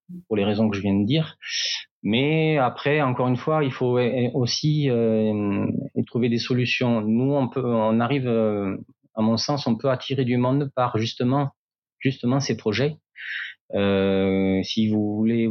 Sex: male